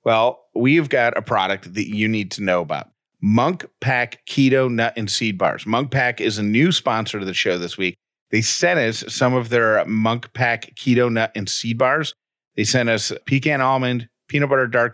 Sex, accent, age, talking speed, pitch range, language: male, American, 40-59, 200 wpm, 110-130 Hz, English